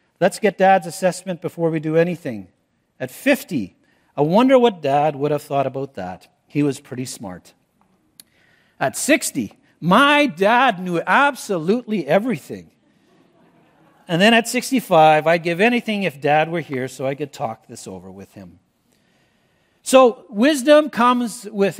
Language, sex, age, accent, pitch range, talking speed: English, male, 50-69, American, 145-220 Hz, 145 wpm